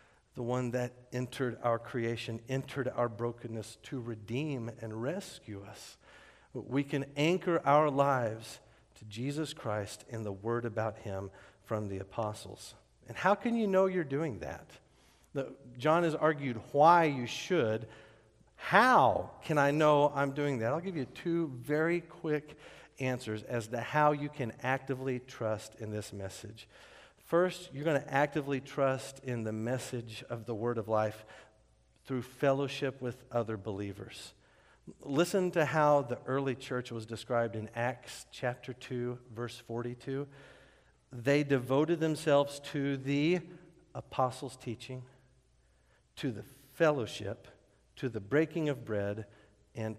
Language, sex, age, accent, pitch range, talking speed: English, male, 50-69, American, 115-150 Hz, 140 wpm